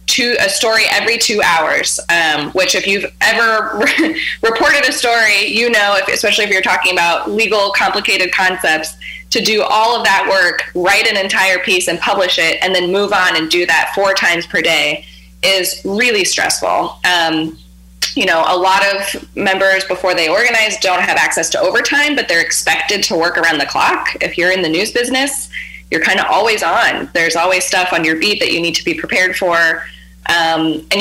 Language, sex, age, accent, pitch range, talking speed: English, female, 10-29, American, 170-205 Hz, 195 wpm